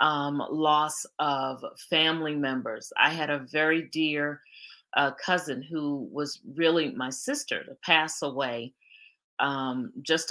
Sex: female